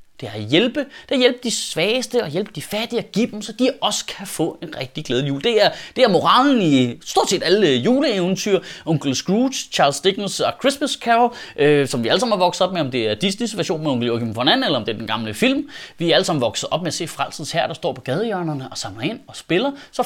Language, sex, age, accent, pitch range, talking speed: Danish, male, 30-49, native, 175-250 Hz, 260 wpm